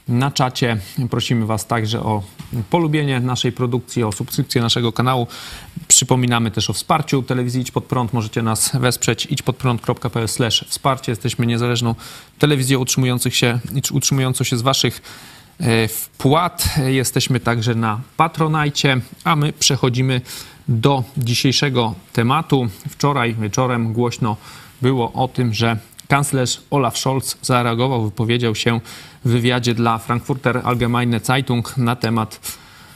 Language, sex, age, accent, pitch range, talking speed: Polish, male, 30-49, native, 120-135 Hz, 120 wpm